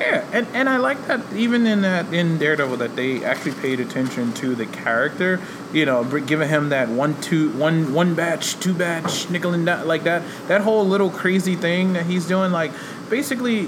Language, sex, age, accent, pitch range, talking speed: English, male, 20-39, American, 130-170 Hz, 200 wpm